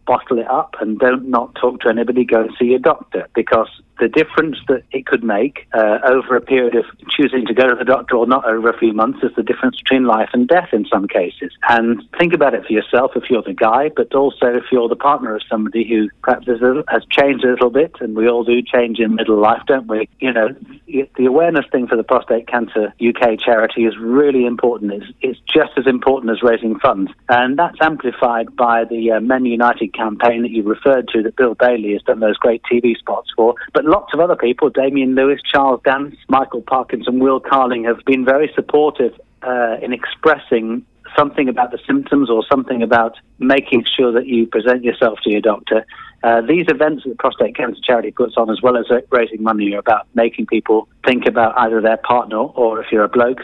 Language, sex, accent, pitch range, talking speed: English, male, British, 115-130 Hz, 220 wpm